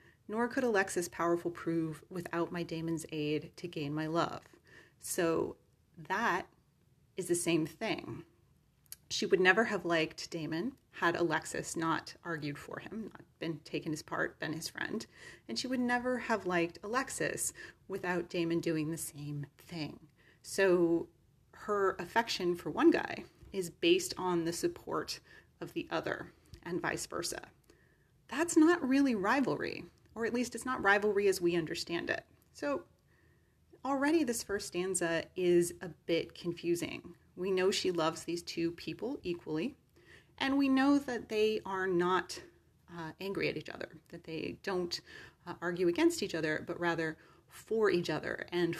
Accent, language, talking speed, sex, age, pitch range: American, English, 155 wpm, female, 30-49, 160-210 Hz